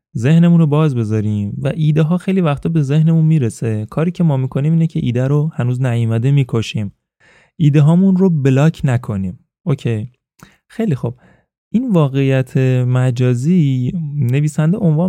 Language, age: Persian, 20-39